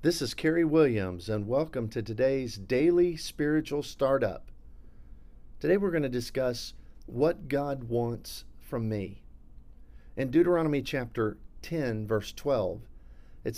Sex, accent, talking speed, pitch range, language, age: male, American, 125 wpm, 105-130 Hz, English, 50-69